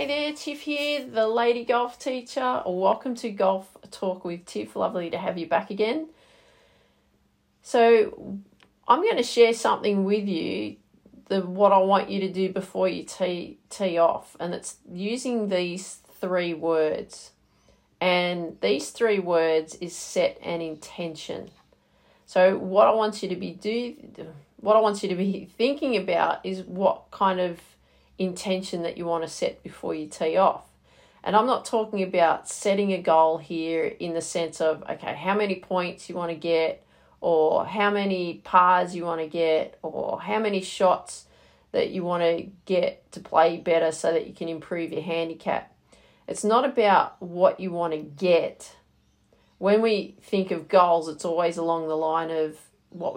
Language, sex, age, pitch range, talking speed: English, female, 40-59, 170-215 Hz, 170 wpm